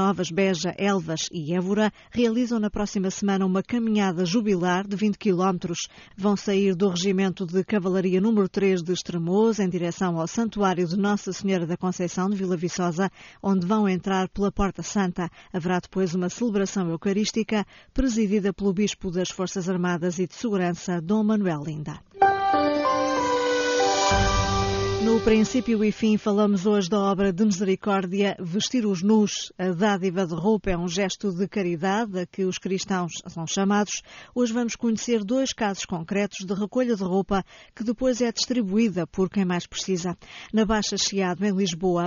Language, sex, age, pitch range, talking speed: Portuguese, female, 20-39, 185-215 Hz, 160 wpm